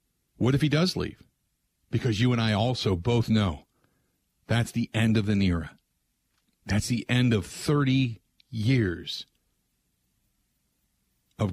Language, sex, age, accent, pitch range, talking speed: English, male, 50-69, American, 110-155 Hz, 130 wpm